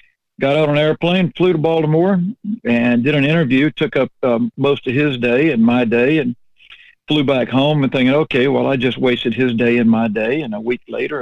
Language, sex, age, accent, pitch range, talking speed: English, male, 60-79, American, 120-165 Hz, 225 wpm